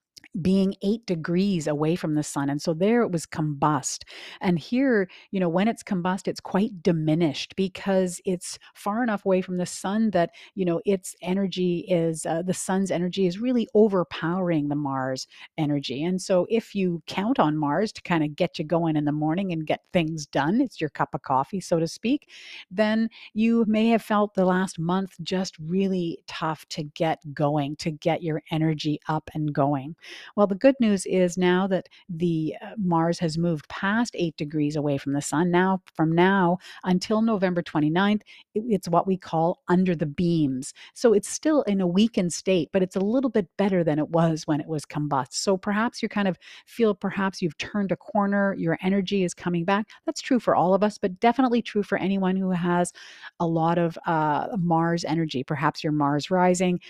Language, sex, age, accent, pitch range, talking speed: English, female, 50-69, American, 160-195 Hz, 195 wpm